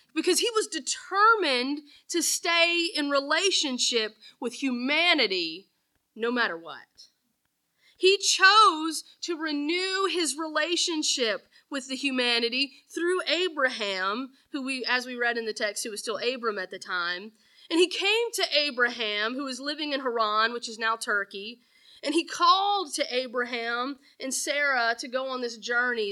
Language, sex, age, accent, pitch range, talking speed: English, female, 30-49, American, 240-335 Hz, 150 wpm